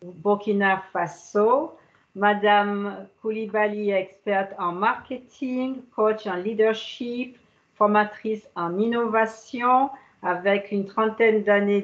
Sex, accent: female, French